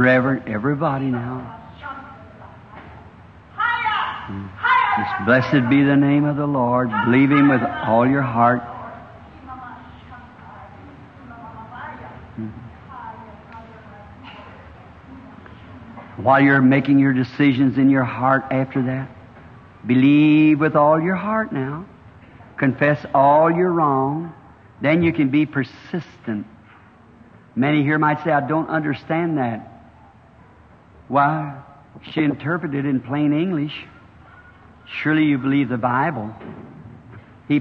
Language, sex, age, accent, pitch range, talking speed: English, male, 60-79, American, 120-155 Hz, 105 wpm